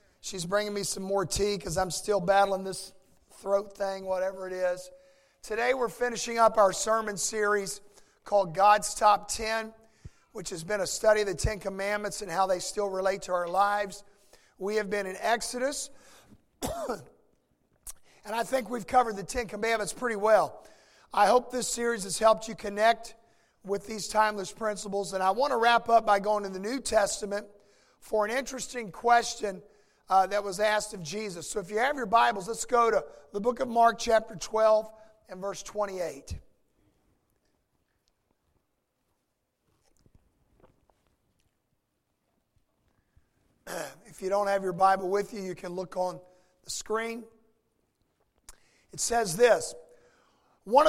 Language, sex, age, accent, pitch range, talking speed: English, male, 50-69, American, 195-230 Hz, 150 wpm